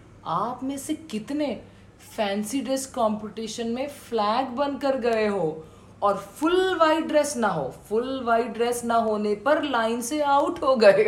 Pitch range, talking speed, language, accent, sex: 180-265 Hz, 155 wpm, Hindi, native, female